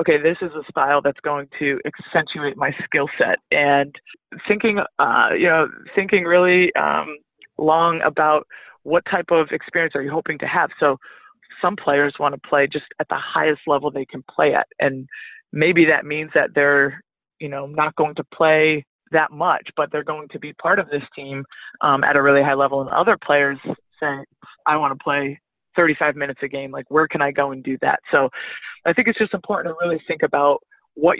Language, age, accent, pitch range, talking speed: English, 20-39, American, 145-170 Hz, 205 wpm